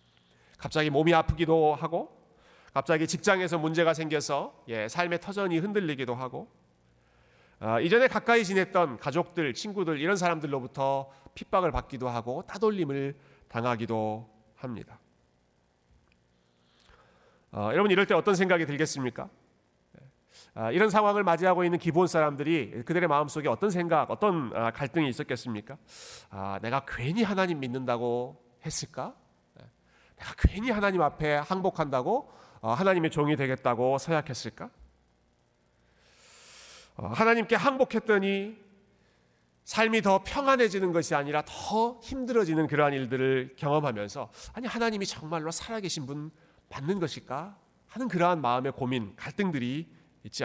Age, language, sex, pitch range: 40-59, Korean, male, 115-180 Hz